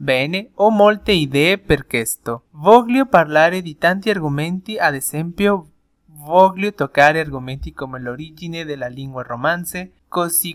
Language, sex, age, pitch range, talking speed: Italian, male, 20-39, 140-185 Hz, 125 wpm